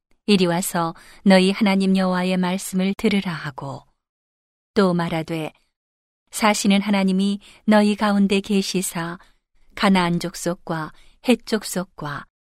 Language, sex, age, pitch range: Korean, female, 40-59, 170-205 Hz